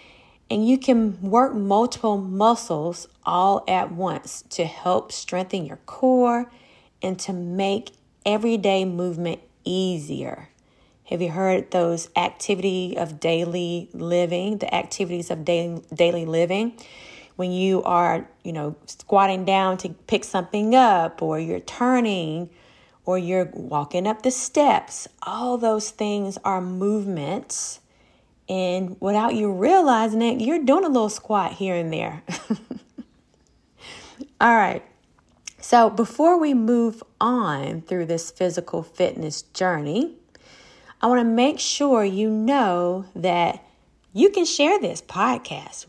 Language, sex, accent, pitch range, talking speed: English, female, American, 175-235 Hz, 125 wpm